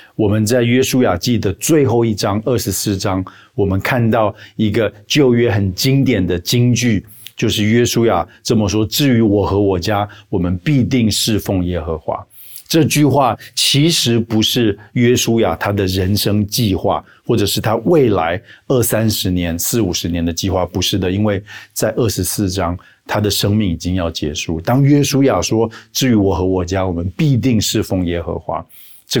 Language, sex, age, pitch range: Chinese, male, 50-69, 95-120 Hz